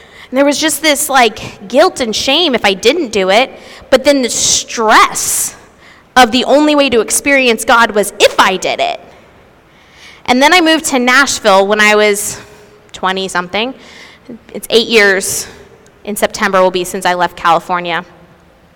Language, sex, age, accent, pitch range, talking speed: English, female, 20-39, American, 210-280 Hz, 165 wpm